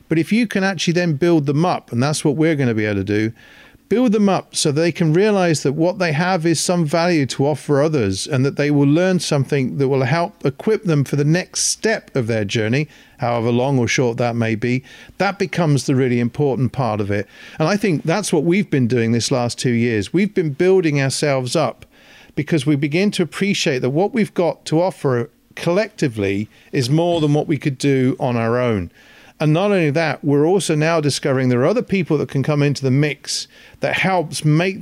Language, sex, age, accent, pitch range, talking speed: English, male, 40-59, British, 125-165 Hz, 220 wpm